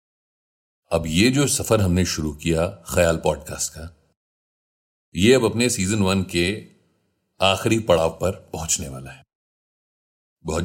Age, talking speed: 40-59, 130 wpm